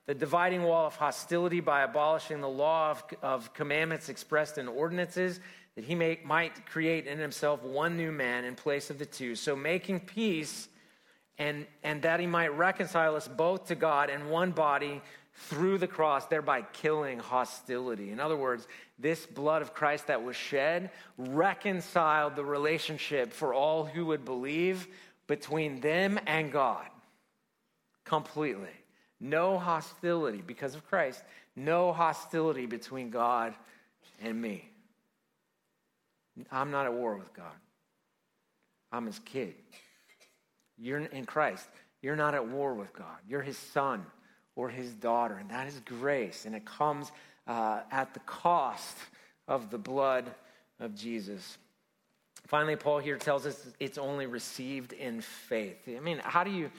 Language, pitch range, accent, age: English, 135-165 Hz, American, 40-59